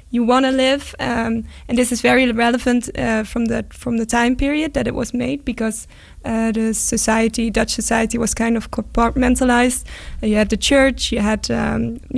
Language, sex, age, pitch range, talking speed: English, female, 10-29, 220-240 Hz, 190 wpm